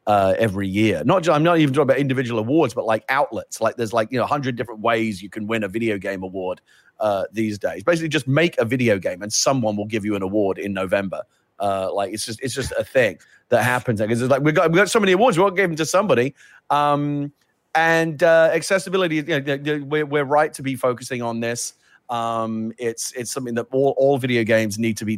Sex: male